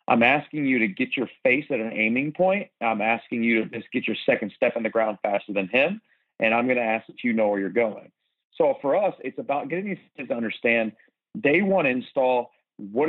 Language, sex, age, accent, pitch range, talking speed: English, male, 40-59, American, 115-160 Hz, 230 wpm